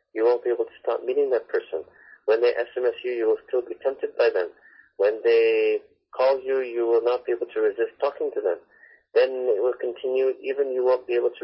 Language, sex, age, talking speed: English, male, 40-59, 230 wpm